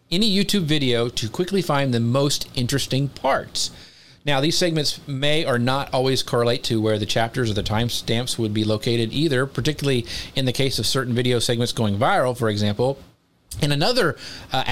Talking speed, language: 180 wpm, English